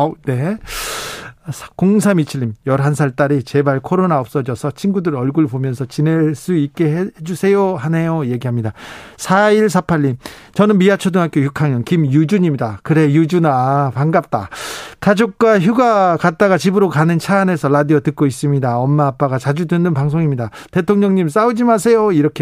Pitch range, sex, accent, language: 140-185 Hz, male, native, Korean